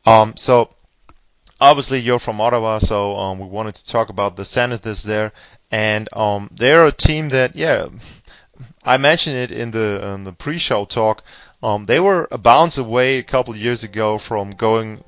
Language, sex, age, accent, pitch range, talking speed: German, male, 20-39, German, 110-130 Hz, 180 wpm